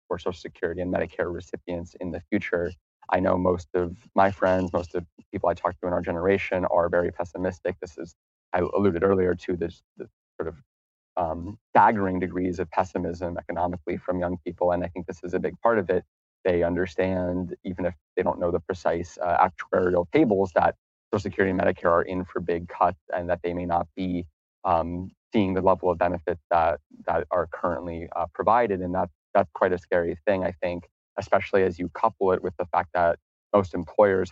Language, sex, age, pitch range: English, male, 30-49, 85-95 Hz